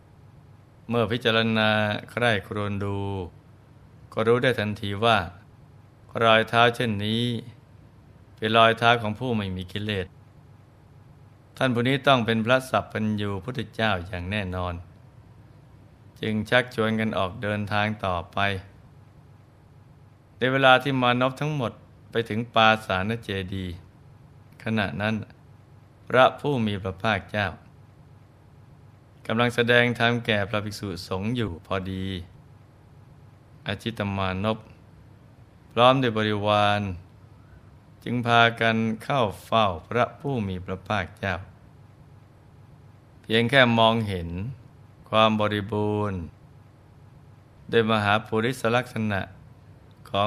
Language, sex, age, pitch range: Thai, male, 20-39, 105-120 Hz